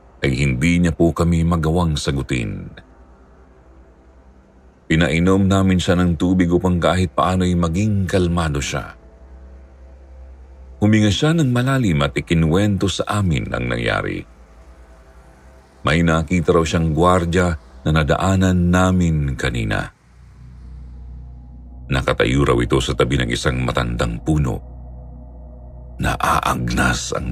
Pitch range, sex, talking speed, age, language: 65-100 Hz, male, 105 wpm, 50-69, Filipino